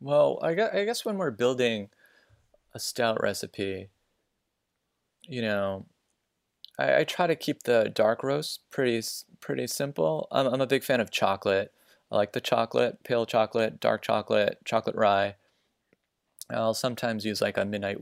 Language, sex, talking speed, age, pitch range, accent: English, male, 145 wpm, 20-39, 100-130 Hz, American